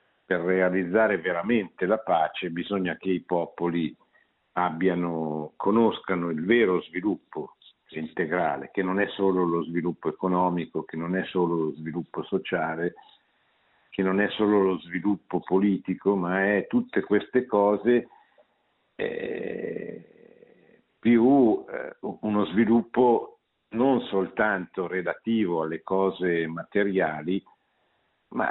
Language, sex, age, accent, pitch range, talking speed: Italian, male, 50-69, native, 85-105 Hz, 110 wpm